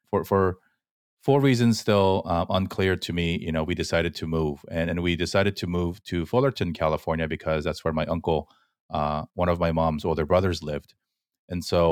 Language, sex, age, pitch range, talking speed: English, male, 30-49, 80-100 Hz, 195 wpm